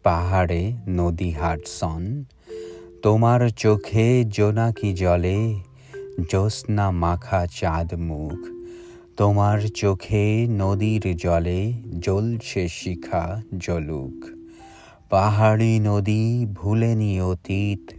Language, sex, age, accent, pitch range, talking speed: Bengali, male, 30-49, native, 90-110 Hz, 75 wpm